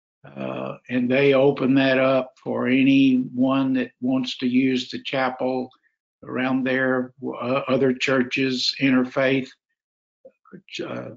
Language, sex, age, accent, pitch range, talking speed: English, male, 60-79, American, 130-155 Hz, 115 wpm